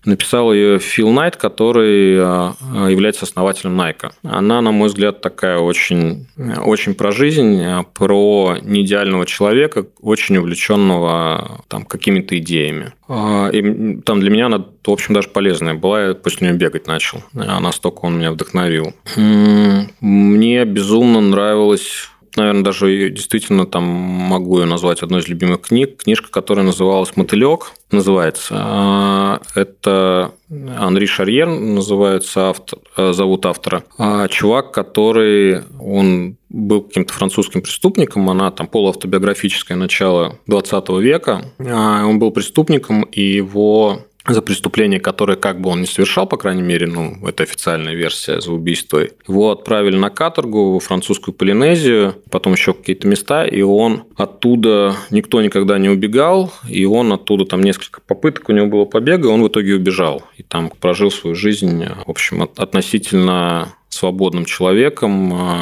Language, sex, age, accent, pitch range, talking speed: Russian, male, 20-39, native, 90-105 Hz, 135 wpm